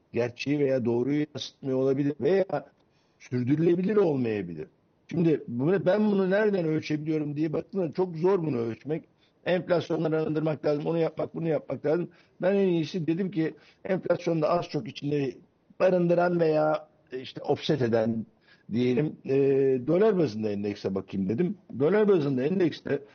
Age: 60-79